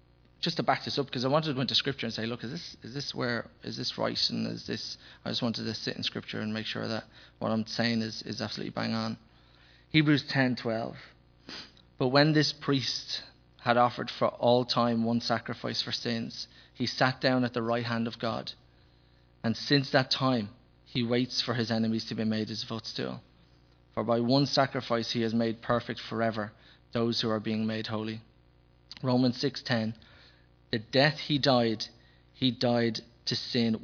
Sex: male